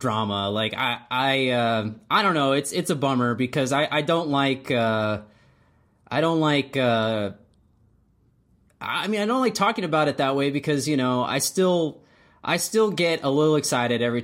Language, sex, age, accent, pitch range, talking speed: English, male, 20-39, American, 105-135 Hz, 185 wpm